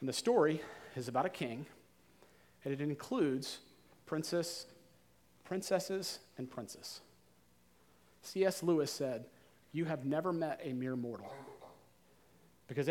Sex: male